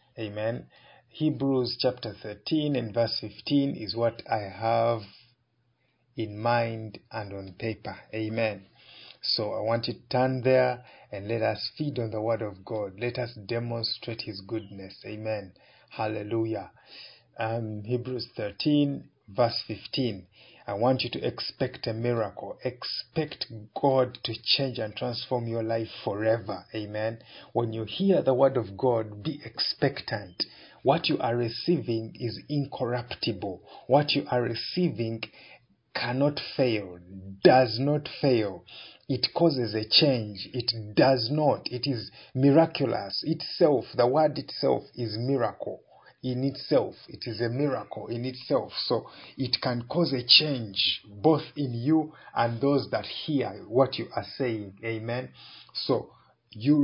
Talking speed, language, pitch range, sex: 135 wpm, English, 110-135 Hz, male